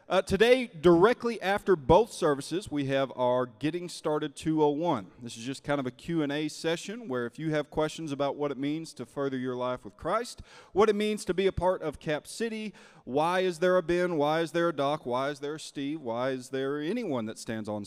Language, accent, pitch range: English, American, 125-180 Hz